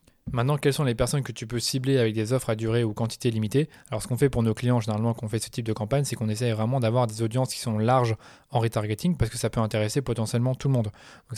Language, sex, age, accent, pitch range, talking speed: French, male, 20-39, French, 115-135 Hz, 285 wpm